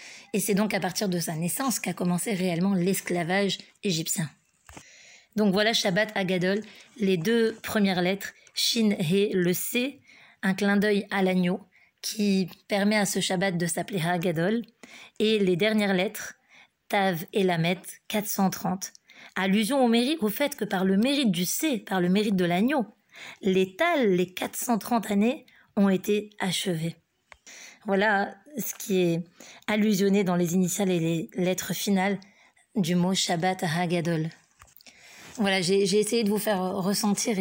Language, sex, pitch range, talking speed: French, female, 185-215 Hz, 150 wpm